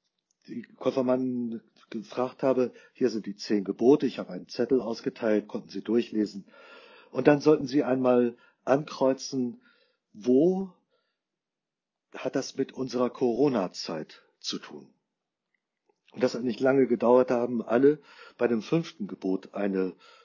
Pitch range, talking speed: 105-135 Hz, 135 wpm